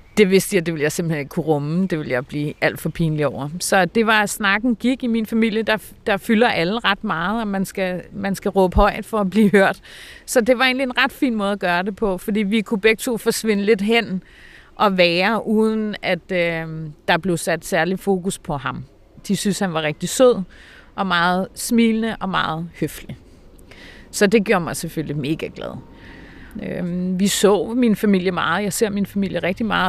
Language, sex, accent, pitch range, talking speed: Danish, female, native, 180-225 Hz, 205 wpm